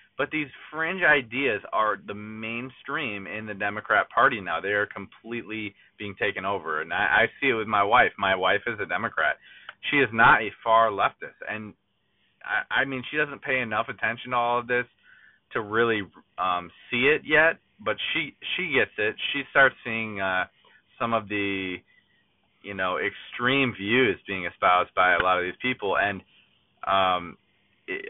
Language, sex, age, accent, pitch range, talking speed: English, male, 20-39, American, 100-125 Hz, 175 wpm